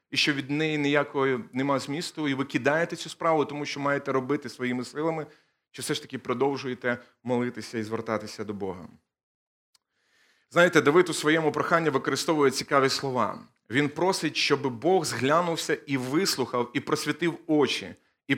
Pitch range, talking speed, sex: 130-155 Hz, 155 wpm, male